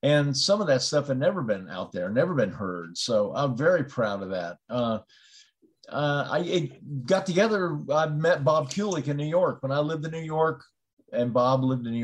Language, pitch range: English, 130-155 Hz